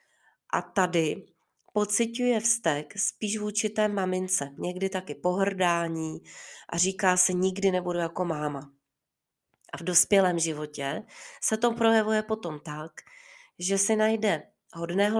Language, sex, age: Czech, female, 30-49